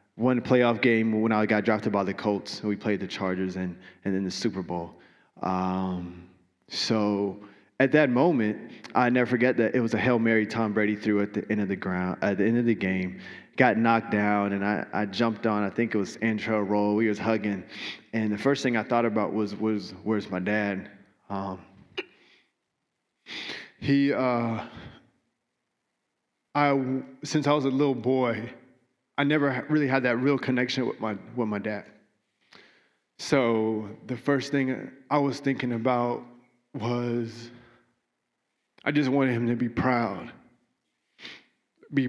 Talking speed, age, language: 170 wpm, 20-39, English